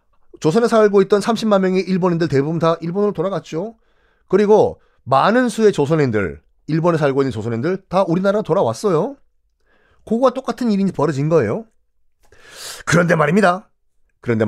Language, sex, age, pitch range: Korean, male, 40-59, 140-210 Hz